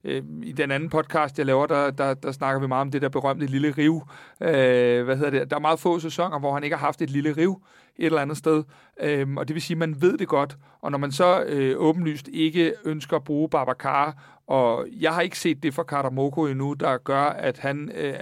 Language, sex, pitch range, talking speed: Danish, male, 140-165 Hz, 245 wpm